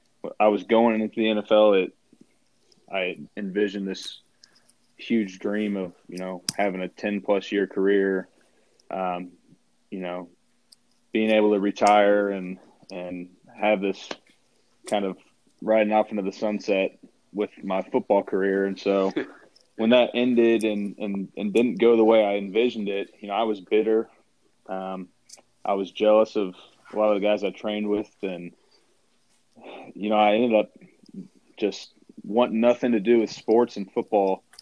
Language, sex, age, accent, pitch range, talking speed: English, male, 20-39, American, 95-110 Hz, 160 wpm